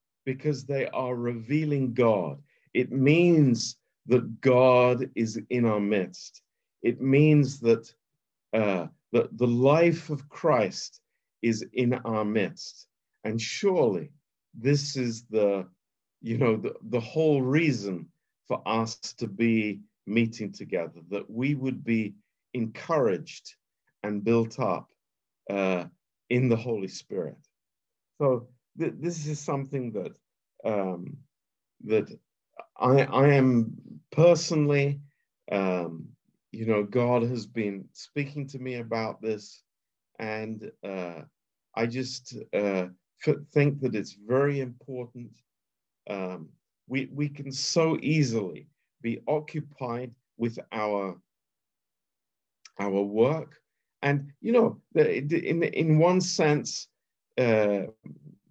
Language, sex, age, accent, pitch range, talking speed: Romanian, male, 50-69, British, 110-140 Hz, 110 wpm